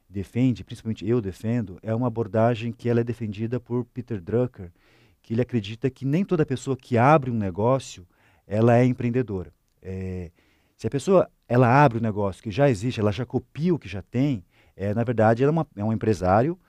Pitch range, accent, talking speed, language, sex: 100-130 Hz, Brazilian, 185 wpm, Portuguese, male